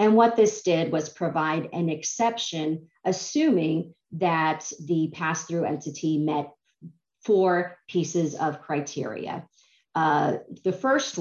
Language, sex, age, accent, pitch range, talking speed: English, female, 30-49, American, 155-185 Hz, 110 wpm